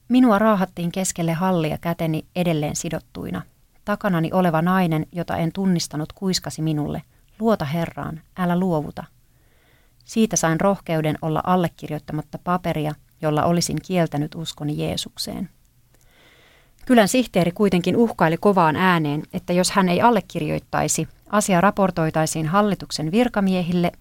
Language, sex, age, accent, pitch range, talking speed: Finnish, female, 30-49, native, 155-190 Hz, 110 wpm